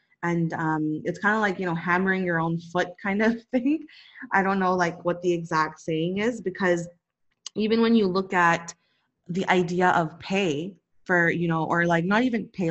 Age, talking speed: 20-39, 200 wpm